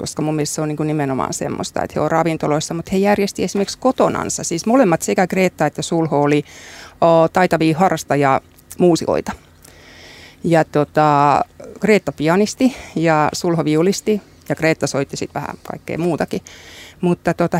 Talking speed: 135 wpm